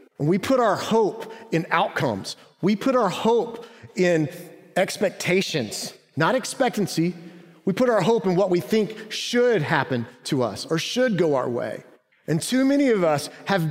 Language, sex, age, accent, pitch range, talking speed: English, male, 40-59, American, 140-195 Hz, 165 wpm